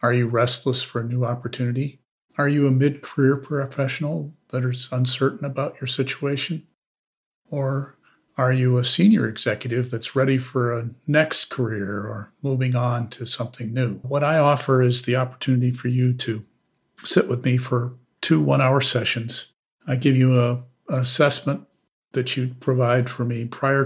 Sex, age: male, 50-69